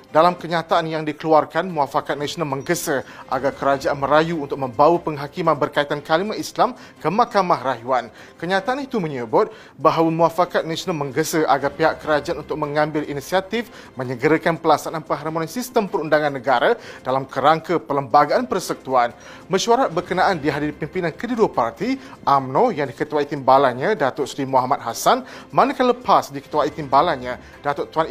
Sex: male